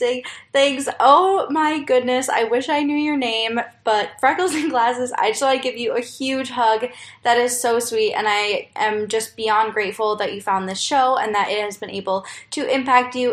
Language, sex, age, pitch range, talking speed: English, female, 10-29, 210-260 Hz, 210 wpm